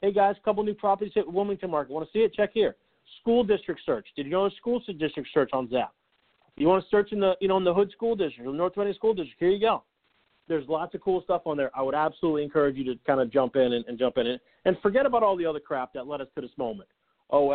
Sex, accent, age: male, American, 40-59